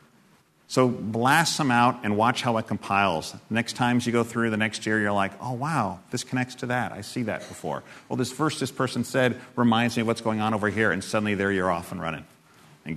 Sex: male